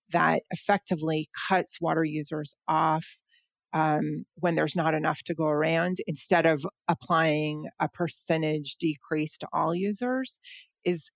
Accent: American